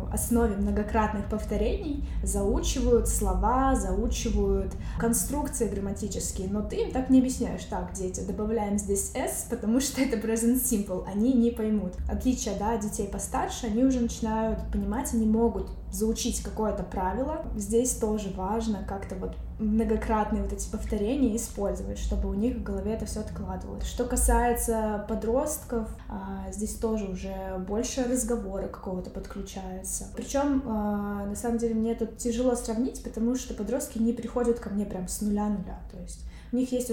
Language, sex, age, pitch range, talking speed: Russian, female, 10-29, 195-240 Hz, 150 wpm